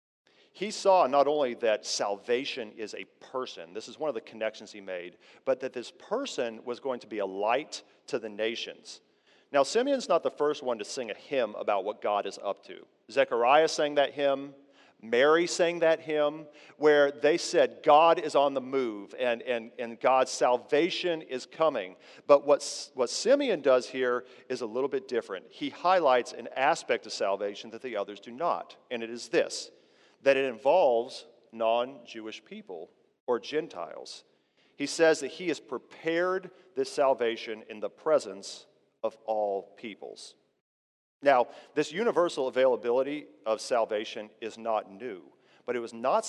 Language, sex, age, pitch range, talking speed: English, male, 40-59, 115-170 Hz, 170 wpm